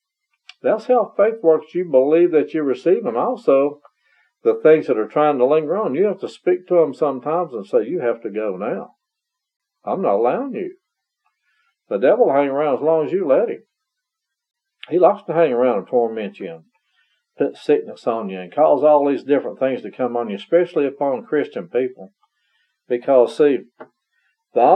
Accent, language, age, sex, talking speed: American, English, 50-69, male, 185 wpm